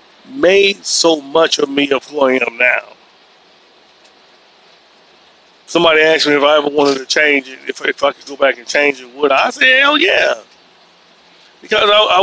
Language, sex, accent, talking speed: English, male, American, 175 wpm